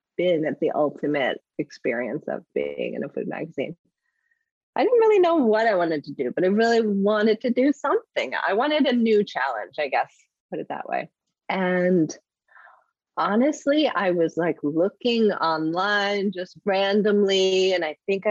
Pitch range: 165-215 Hz